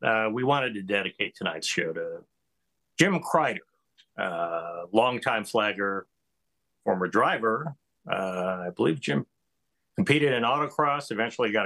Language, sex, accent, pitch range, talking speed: English, male, American, 95-120 Hz, 125 wpm